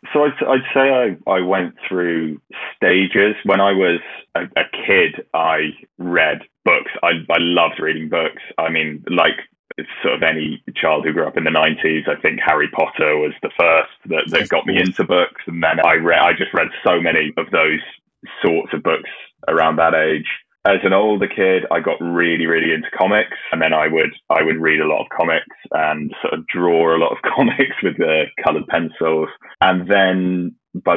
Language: English